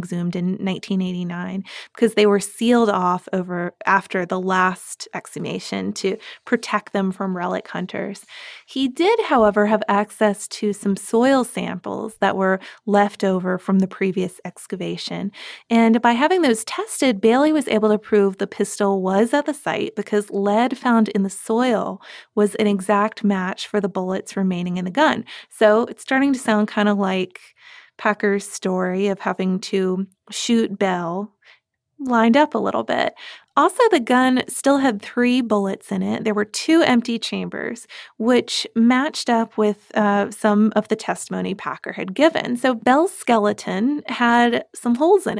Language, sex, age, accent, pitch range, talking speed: English, female, 20-39, American, 195-235 Hz, 165 wpm